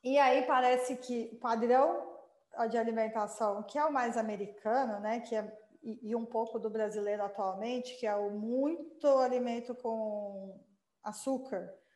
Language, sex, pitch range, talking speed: Portuguese, female, 225-275 Hz, 145 wpm